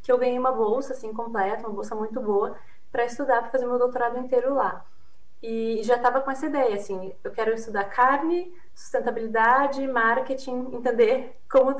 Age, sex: 20-39, female